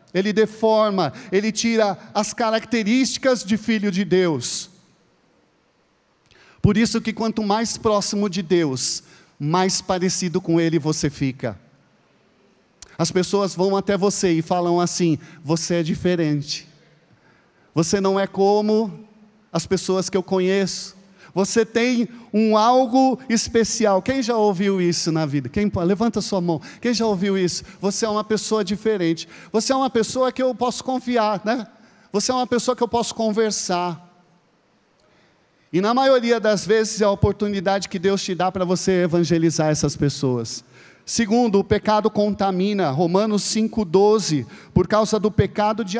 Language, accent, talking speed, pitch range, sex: Portuguese, Brazilian, 145 wpm, 175-220 Hz, male